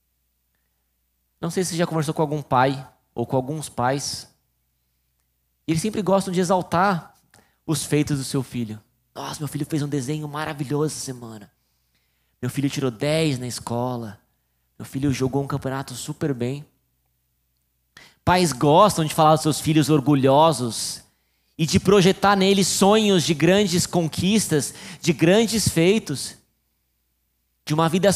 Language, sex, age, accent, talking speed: Portuguese, male, 20-39, Brazilian, 145 wpm